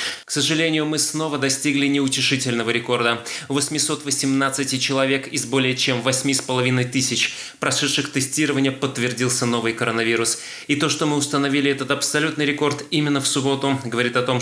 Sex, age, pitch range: male, 20-39, 120-140 Hz